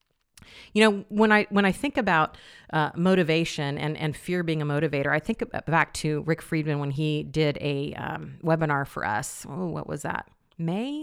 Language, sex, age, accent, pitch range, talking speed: English, female, 40-59, American, 155-205 Hz, 190 wpm